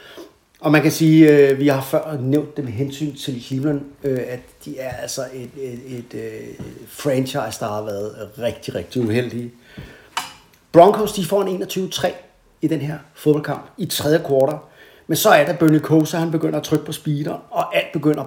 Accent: native